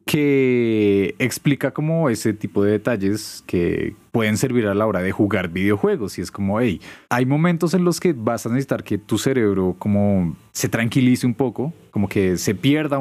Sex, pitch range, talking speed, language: male, 105-140 Hz, 185 wpm, Spanish